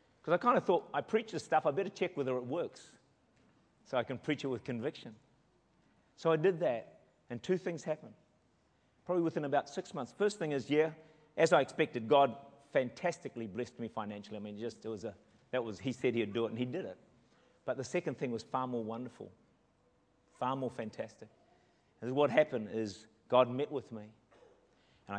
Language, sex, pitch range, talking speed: English, male, 115-155 Hz, 200 wpm